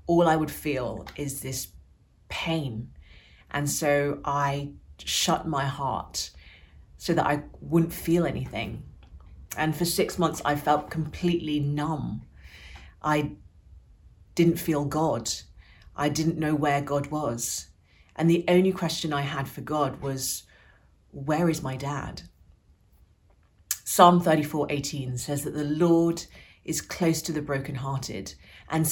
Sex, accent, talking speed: female, British, 130 wpm